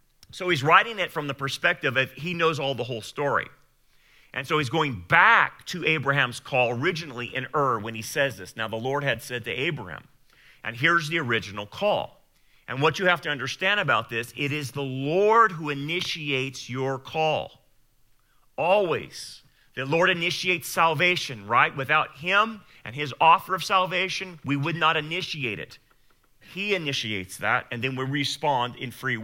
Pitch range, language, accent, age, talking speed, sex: 130-175 Hz, English, American, 40-59, 170 wpm, male